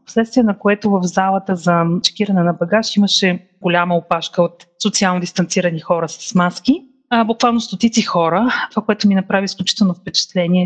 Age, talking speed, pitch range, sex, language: 30-49, 160 wpm, 175-210 Hz, female, Bulgarian